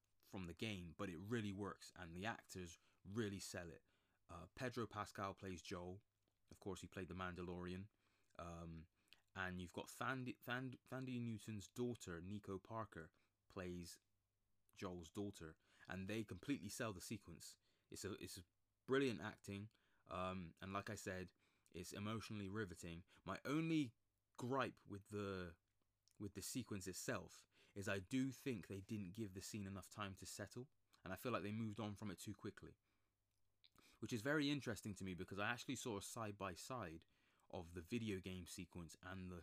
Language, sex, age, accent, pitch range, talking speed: English, male, 20-39, British, 90-110 Hz, 170 wpm